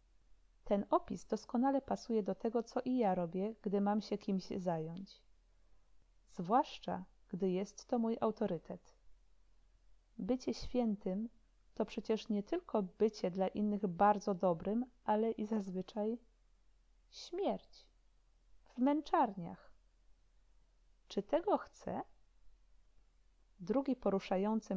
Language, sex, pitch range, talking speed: Polish, female, 180-220 Hz, 105 wpm